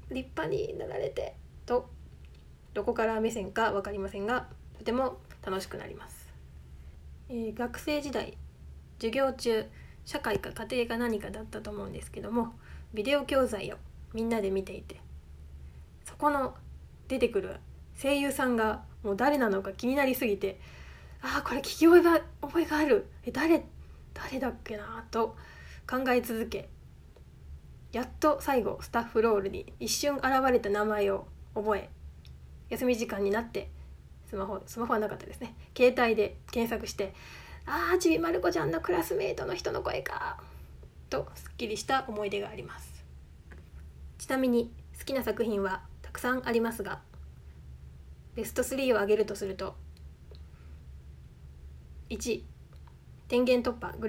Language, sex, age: Japanese, female, 20-39